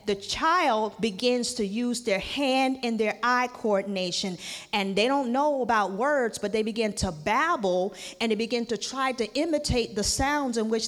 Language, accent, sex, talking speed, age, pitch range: English, American, female, 180 wpm, 40-59, 190-265 Hz